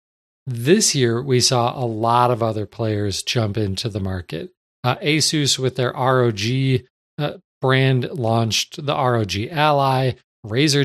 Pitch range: 115-145 Hz